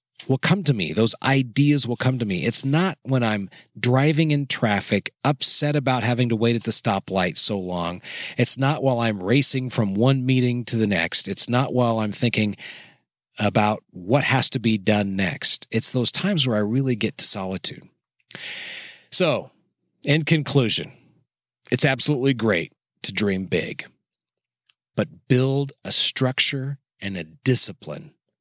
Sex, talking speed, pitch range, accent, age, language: male, 160 wpm, 105-135 Hz, American, 30-49, English